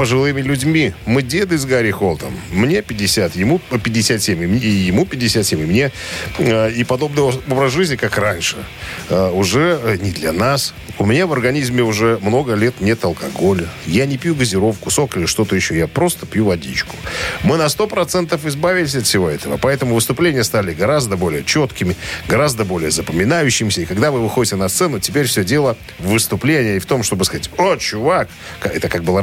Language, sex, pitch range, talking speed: Russian, male, 105-140 Hz, 175 wpm